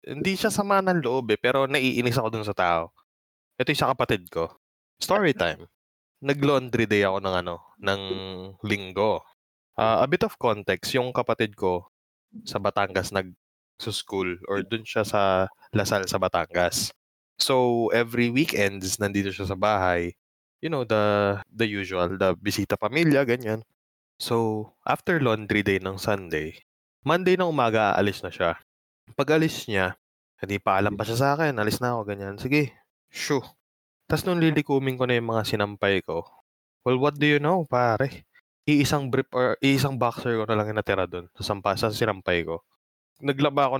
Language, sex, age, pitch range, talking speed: English, male, 20-39, 100-125 Hz, 160 wpm